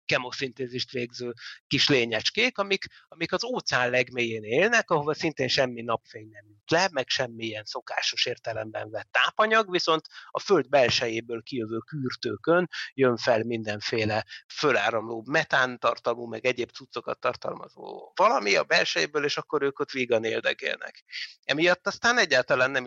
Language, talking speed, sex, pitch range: Hungarian, 130 wpm, male, 120-150 Hz